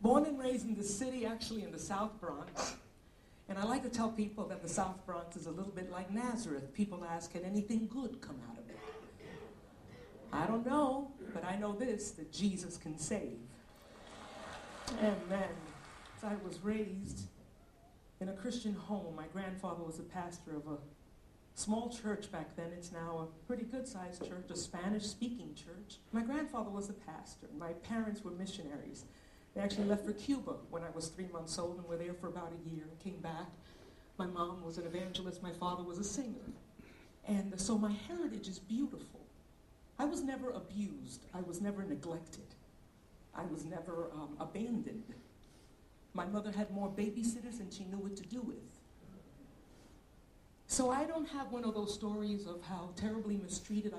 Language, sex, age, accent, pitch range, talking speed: English, female, 50-69, American, 175-225 Hz, 175 wpm